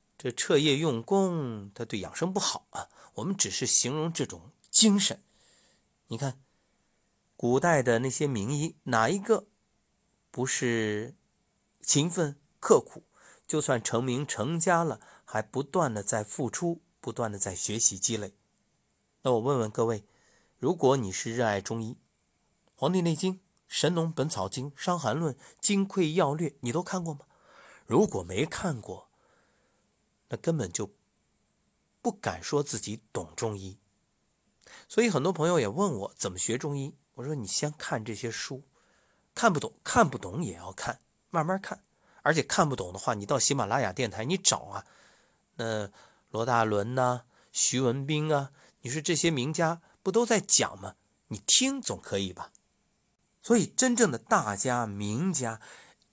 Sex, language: male, Chinese